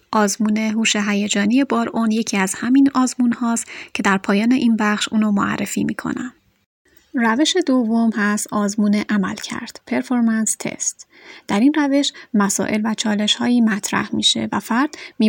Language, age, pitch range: Persian, 30-49, 210-250 Hz